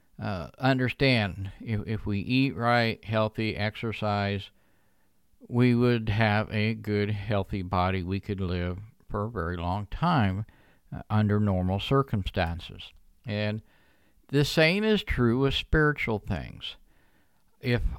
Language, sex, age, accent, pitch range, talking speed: English, male, 60-79, American, 100-125 Hz, 125 wpm